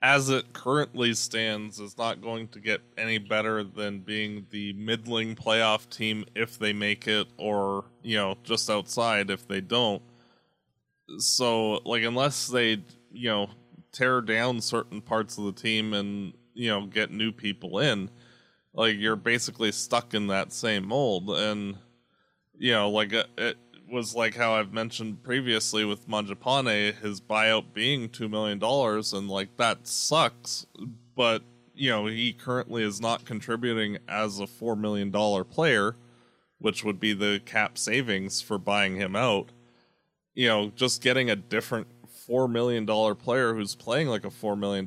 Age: 20-39